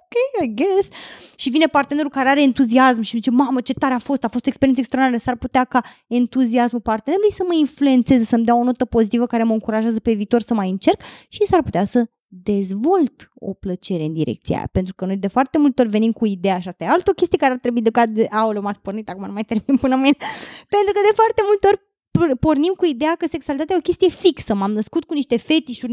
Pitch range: 235-330 Hz